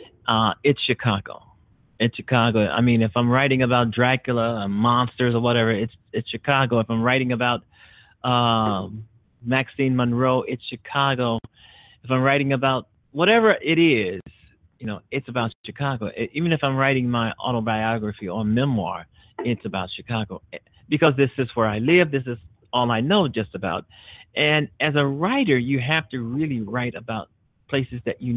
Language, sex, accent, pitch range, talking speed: English, male, American, 110-135 Hz, 165 wpm